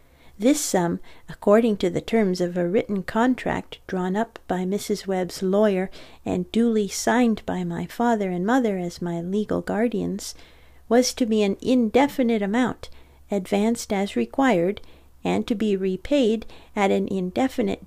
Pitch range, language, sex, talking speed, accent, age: 180-230 Hz, English, female, 150 wpm, American, 50-69